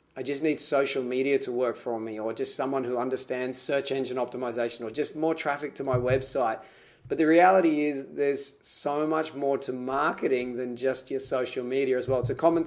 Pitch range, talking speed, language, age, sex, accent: 125-150 Hz, 210 wpm, English, 30-49, male, Australian